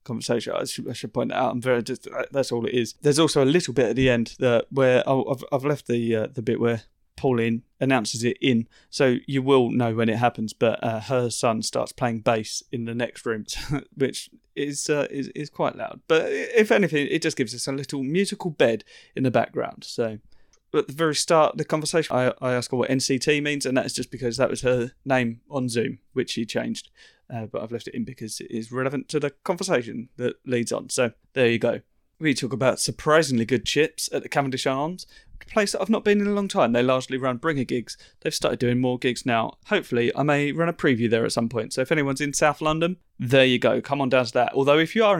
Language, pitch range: English, 120-150 Hz